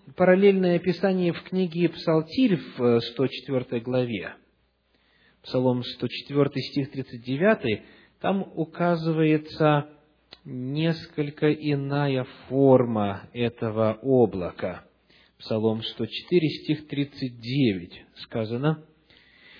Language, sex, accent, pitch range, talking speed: Russian, male, native, 115-175 Hz, 75 wpm